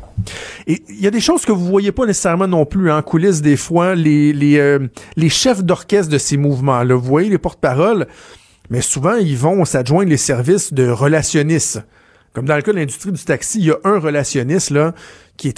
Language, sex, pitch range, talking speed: French, male, 135-165 Hz, 220 wpm